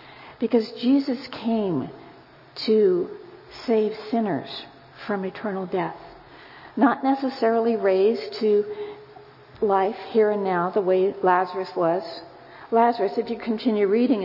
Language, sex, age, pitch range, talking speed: English, female, 50-69, 190-245 Hz, 110 wpm